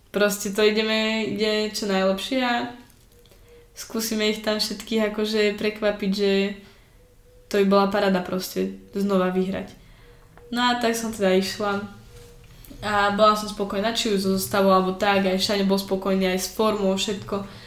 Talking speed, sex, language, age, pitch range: 150 wpm, female, Czech, 10-29, 190-215 Hz